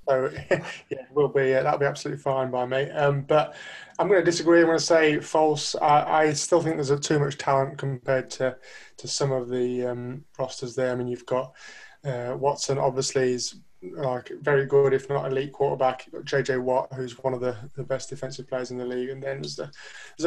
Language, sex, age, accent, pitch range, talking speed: English, male, 20-39, British, 130-145 Hz, 225 wpm